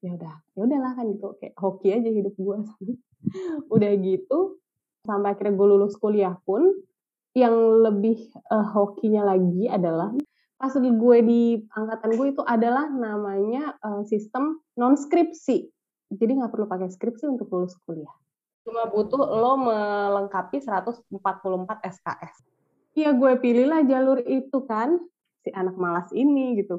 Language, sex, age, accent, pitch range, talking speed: Indonesian, female, 20-39, native, 200-270 Hz, 135 wpm